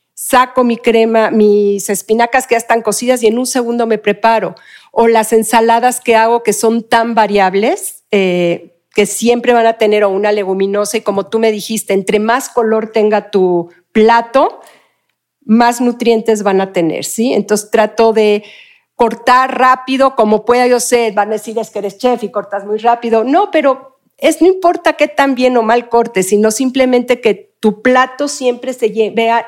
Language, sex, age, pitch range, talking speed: Spanish, female, 50-69, 210-255 Hz, 180 wpm